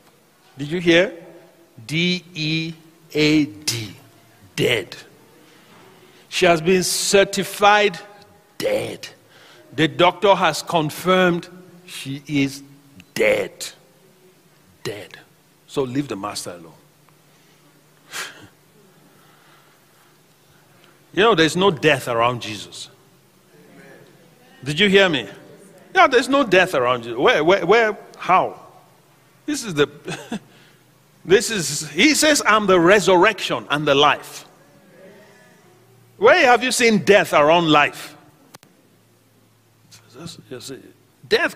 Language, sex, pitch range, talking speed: English, male, 150-205 Hz, 100 wpm